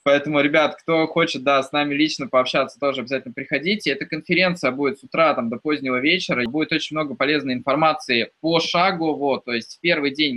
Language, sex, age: Russian, male, 20-39